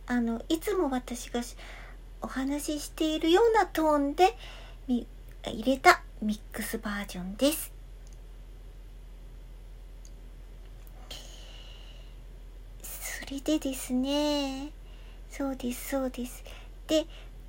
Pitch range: 245-330 Hz